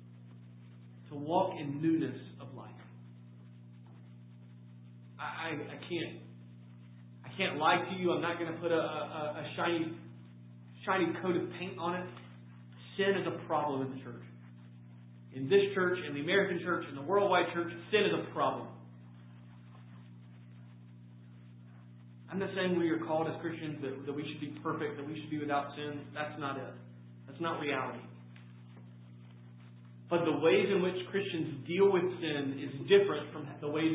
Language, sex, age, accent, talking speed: English, male, 30-49, American, 160 wpm